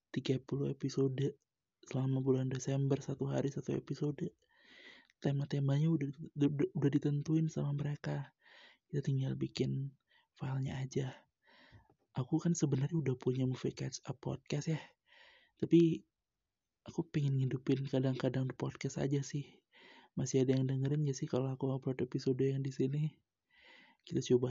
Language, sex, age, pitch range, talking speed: Indonesian, male, 30-49, 135-155 Hz, 130 wpm